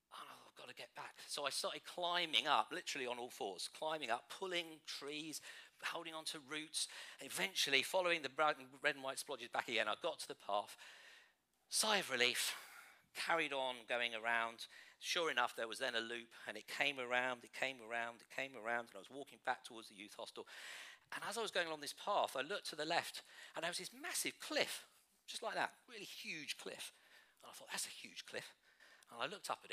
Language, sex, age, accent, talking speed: English, male, 50-69, British, 210 wpm